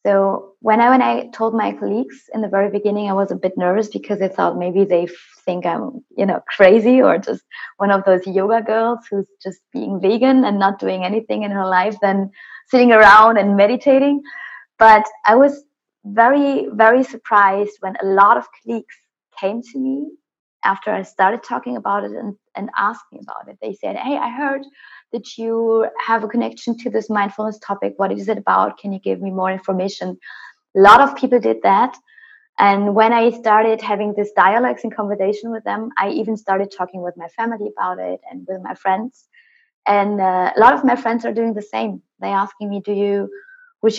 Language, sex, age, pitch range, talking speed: English, female, 20-39, 195-235 Hz, 200 wpm